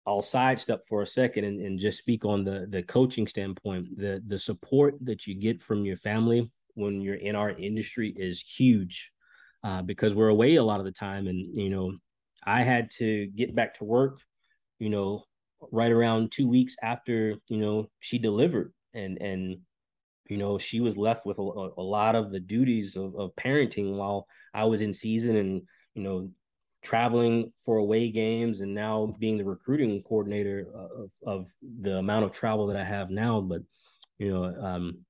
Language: English